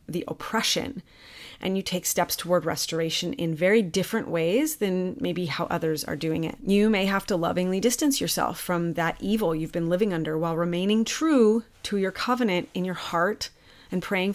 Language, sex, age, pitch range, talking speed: English, female, 30-49, 170-200 Hz, 185 wpm